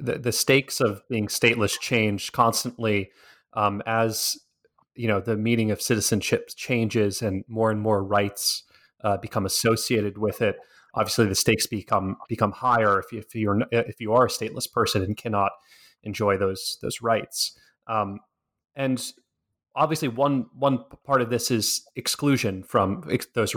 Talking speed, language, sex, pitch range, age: 160 wpm, English, male, 105-120 Hz, 30-49